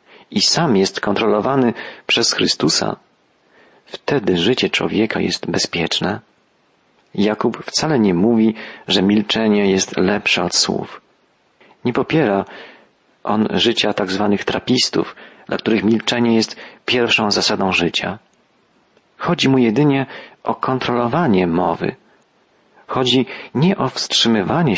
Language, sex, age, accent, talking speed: Polish, male, 40-59, native, 105 wpm